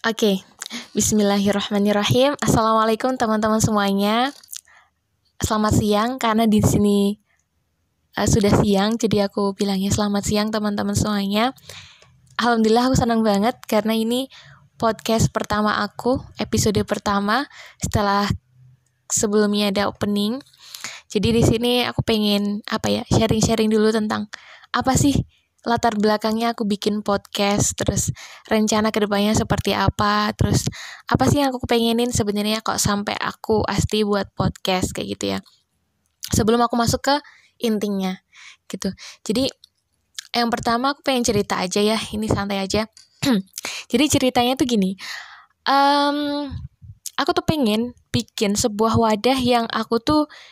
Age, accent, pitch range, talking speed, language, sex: 10-29, native, 205-235 Hz, 125 wpm, Indonesian, female